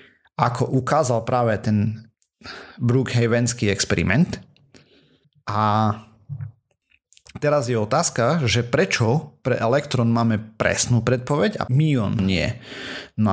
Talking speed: 95 wpm